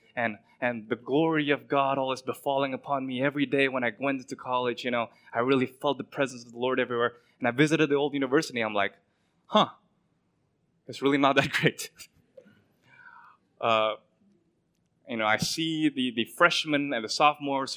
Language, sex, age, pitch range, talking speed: English, male, 20-39, 120-160 Hz, 180 wpm